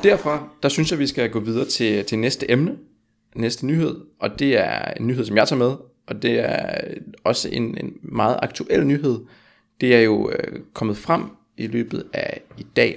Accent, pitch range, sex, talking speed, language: native, 115-145 Hz, male, 205 wpm, Danish